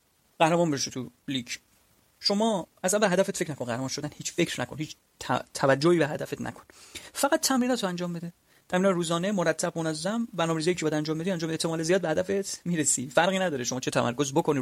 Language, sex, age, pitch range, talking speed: Persian, male, 30-49, 145-190 Hz, 195 wpm